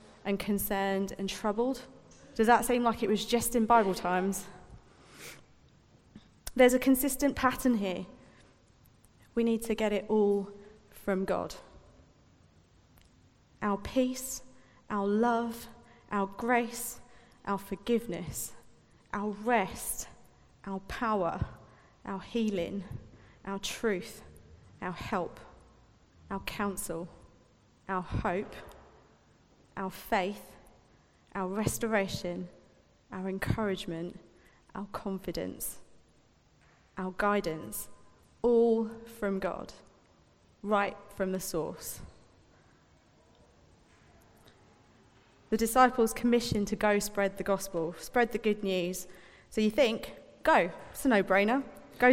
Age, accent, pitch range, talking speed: 30-49, British, 180-230 Hz, 100 wpm